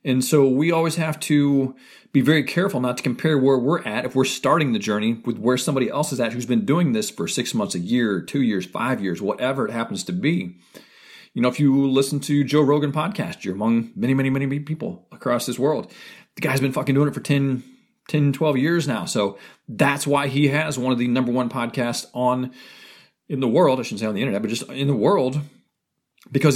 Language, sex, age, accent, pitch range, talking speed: English, male, 40-59, American, 125-150 Hz, 235 wpm